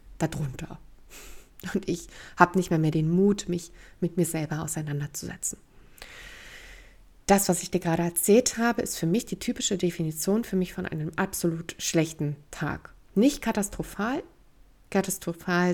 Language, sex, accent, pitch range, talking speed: German, female, German, 165-205 Hz, 140 wpm